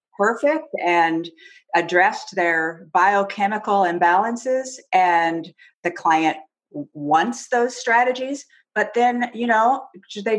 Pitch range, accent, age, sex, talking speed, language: 155-200 Hz, American, 40-59, female, 100 wpm, English